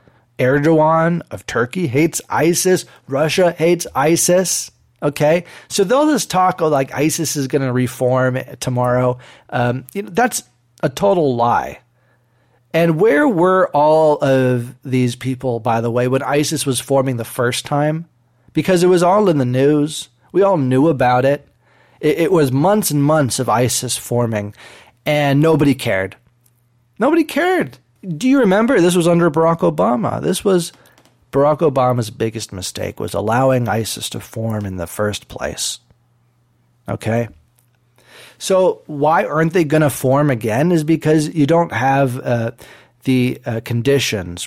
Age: 30-49